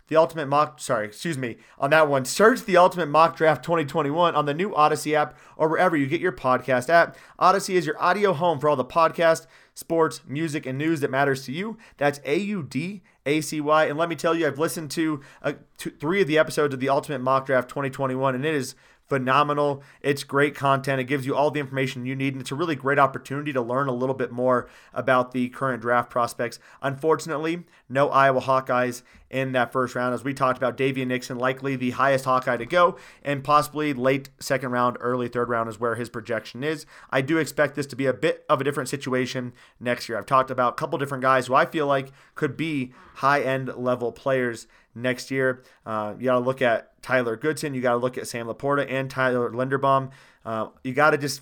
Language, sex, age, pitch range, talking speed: English, male, 30-49, 130-155 Hz, 225 wpm